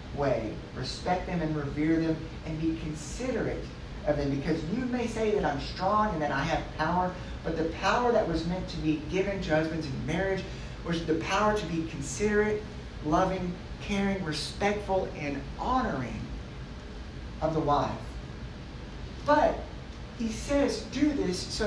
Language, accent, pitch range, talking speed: English, American, 160-215 Hz, 150 wpm